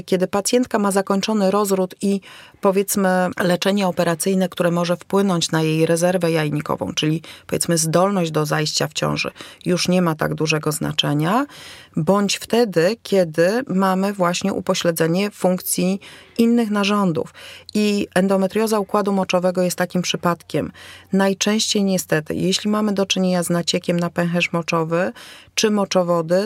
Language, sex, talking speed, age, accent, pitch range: Polish, female, 130 wpm, 40-59, native, 175-200 Hz